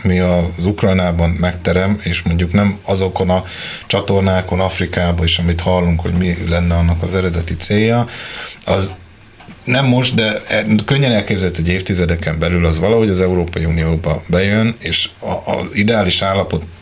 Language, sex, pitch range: Hungarian, male, 85-105 Hz